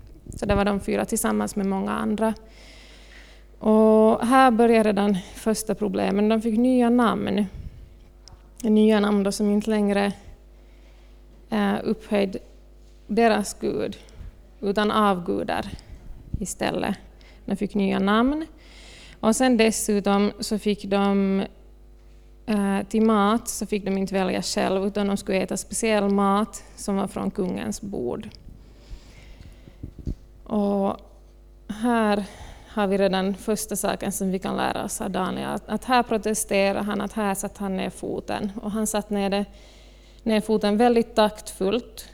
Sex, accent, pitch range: female, native, 200-220 Hz